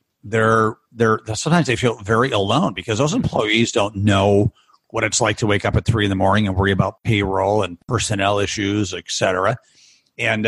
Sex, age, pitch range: male, 50-69, 100-125 Hz